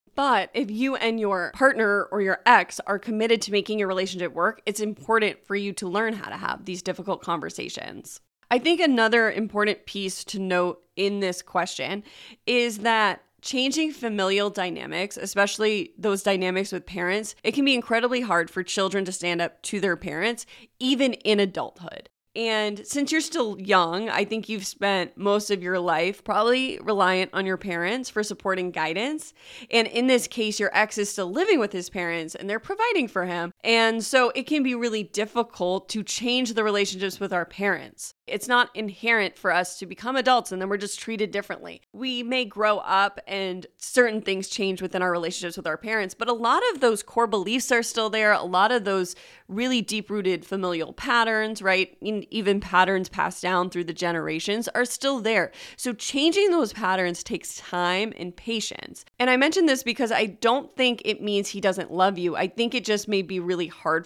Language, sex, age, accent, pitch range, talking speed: English, female, 20-39, American, 185-230 Hz, 190 wpm